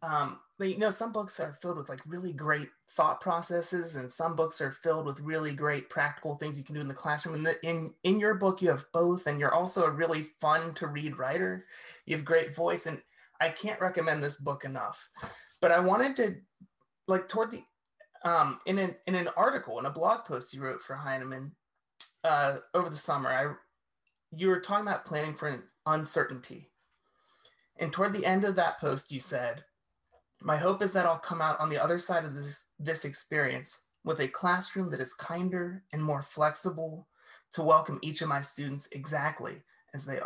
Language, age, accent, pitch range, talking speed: English, 30-49, American, 145-180 Hz, 200 wpm